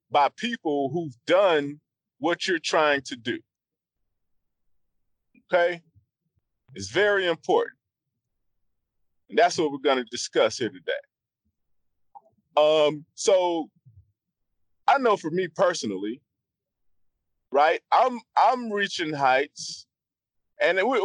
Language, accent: English, American